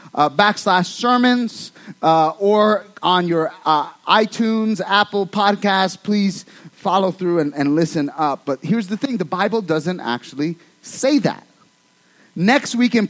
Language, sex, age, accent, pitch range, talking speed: English, male, 30-49, American, 185-245 Hz, 140 wpm